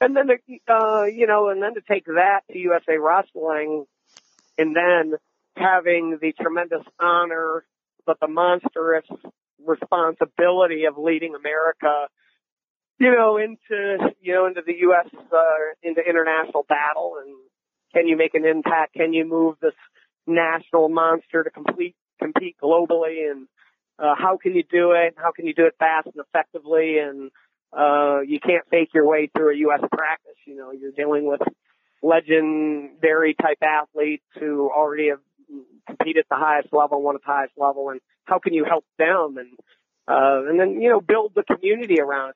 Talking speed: 165 wpm